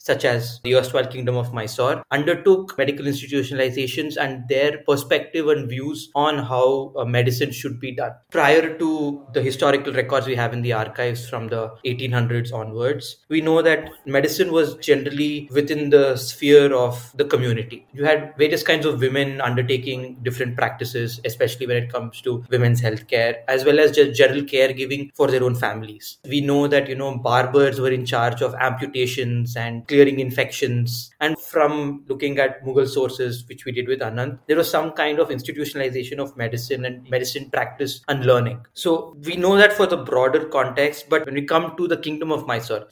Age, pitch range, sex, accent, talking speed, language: 20-39, 125-145 Hz, male, Indian, 180 wpm, English